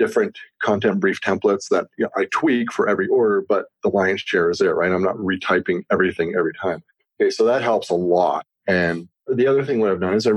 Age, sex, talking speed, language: 30-49, male, 220 wpm, English